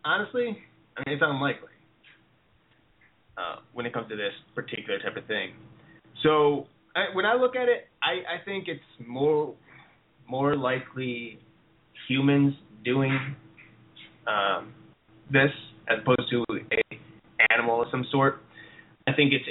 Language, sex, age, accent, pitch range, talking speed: English, male, 20-39, American, 120-150 Hz, 135 wpm